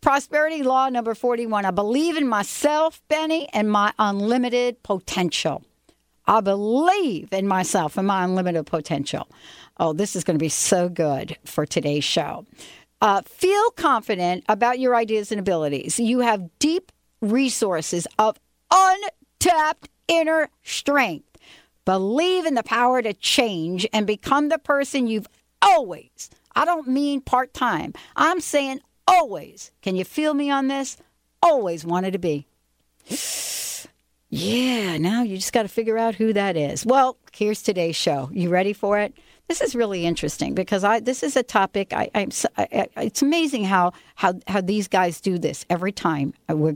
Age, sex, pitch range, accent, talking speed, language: 60-79, female, 175-250 Hz, American, 155 wpm, English